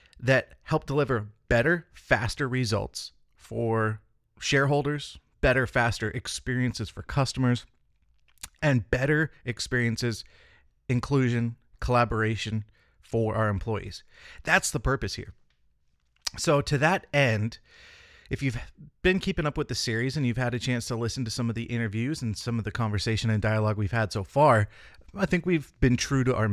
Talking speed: 150 wpm